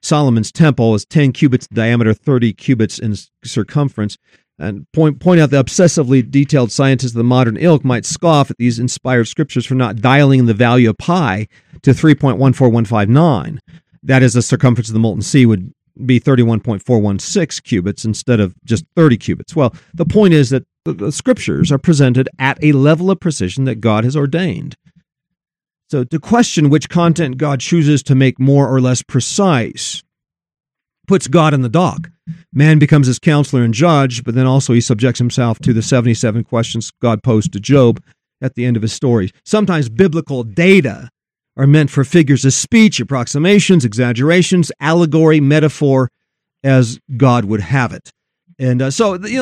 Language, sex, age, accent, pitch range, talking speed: English, male, 40-59, American, 120-160 Hz, 170 wpm